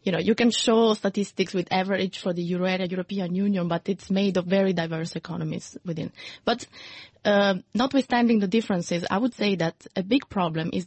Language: English